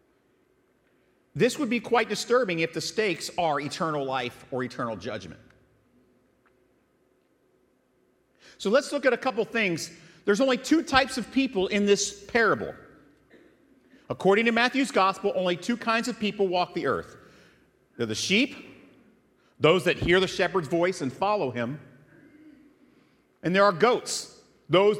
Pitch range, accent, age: 175-230 Hz, American, 50-69